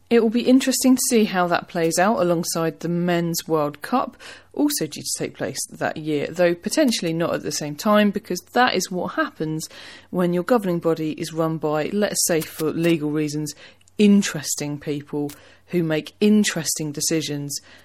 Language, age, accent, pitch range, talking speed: English, 30-49, British, 150-205 Hz, 175 wpm